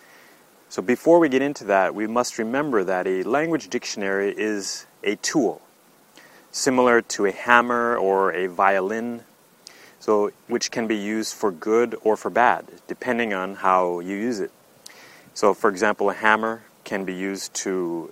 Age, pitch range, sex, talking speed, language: 30-49, 100-120 Hz, male, 160 wpm, English